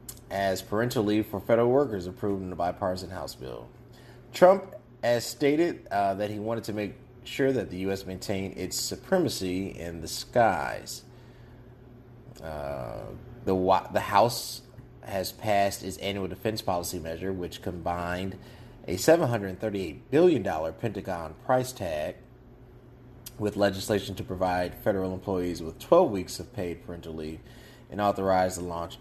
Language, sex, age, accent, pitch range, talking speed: English, male, 30-49, American, 90-125 Hz, 140 wpm